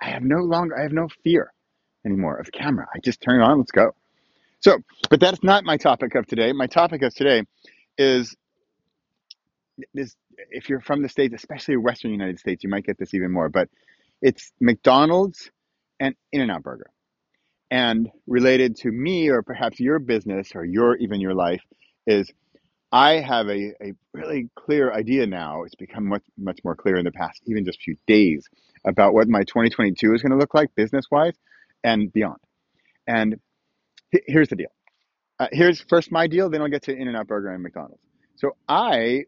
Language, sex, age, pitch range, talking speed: English, male, 30-49, 110-145 Hz, 190 wpm